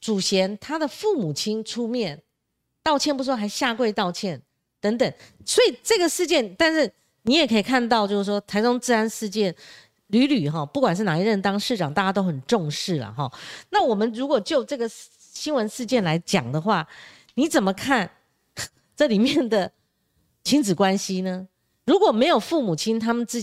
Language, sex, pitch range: Chinese, female, 175-250 Hz